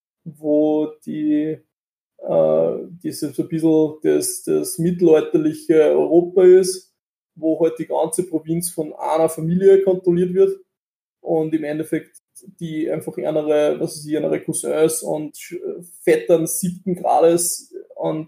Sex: male